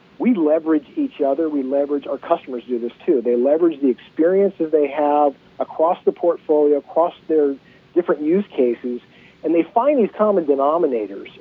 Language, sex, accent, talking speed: English, male, American, 165 wpm